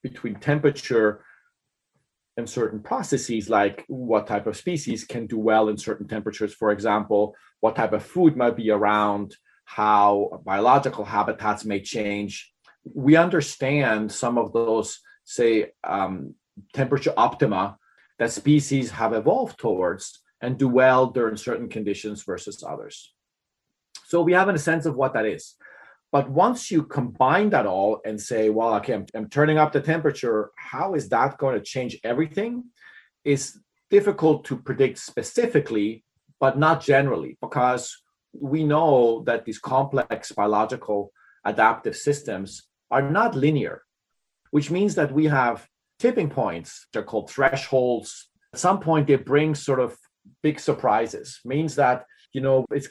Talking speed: 145 wpm